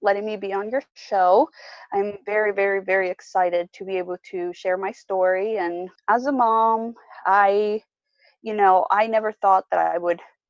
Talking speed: 175 wpm